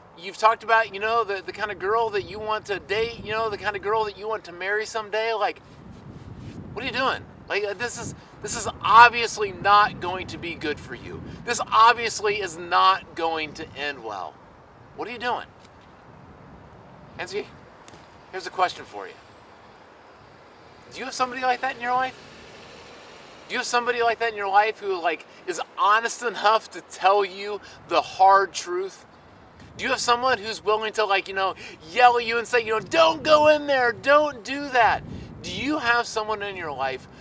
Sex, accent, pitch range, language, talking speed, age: male, American, 185-235 Hz, English, 200 wpm, 30-49